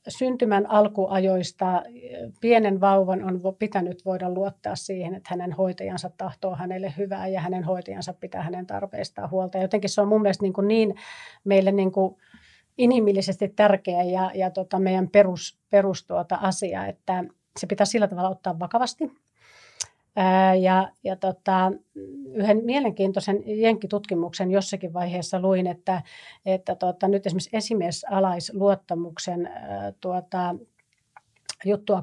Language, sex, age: Finnish, female, 40-59